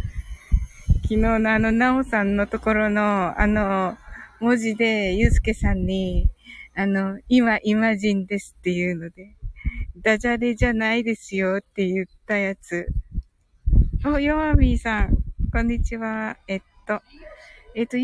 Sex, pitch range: female, 180-230 Hz